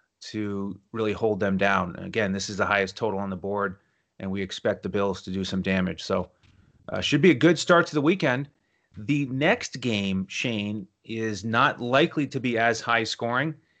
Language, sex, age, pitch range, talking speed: English, male, 30-49, 110-140 Hz, 200 wpm